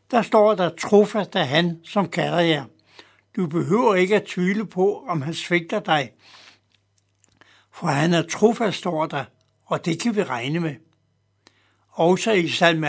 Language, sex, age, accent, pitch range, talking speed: Danish, male, 60-79, native, 155-205 Hz, 165 wpm